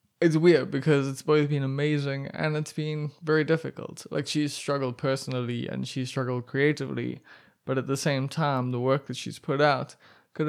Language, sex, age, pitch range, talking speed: English, male, 20-39, 130-155 Hz, 185 wpm